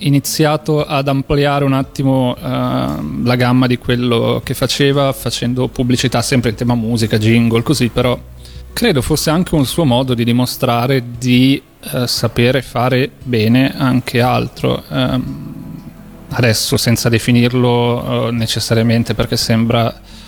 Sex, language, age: male, Italian, 30-49